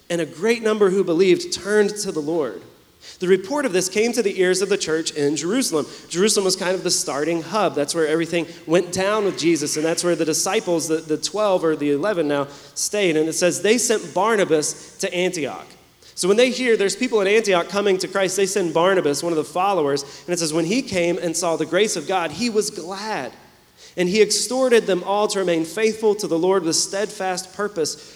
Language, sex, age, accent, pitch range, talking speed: English, male, 30-49, American, 160-210 Hz, 225 wpm